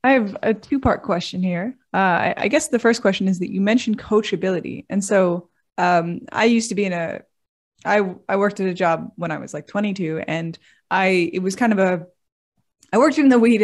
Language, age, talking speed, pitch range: English, 20-39, 220 wpm, 175-215 Hz